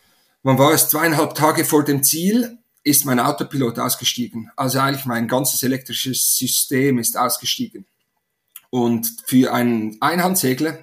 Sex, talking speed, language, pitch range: male, 135 wpm, German, 120-140 Hz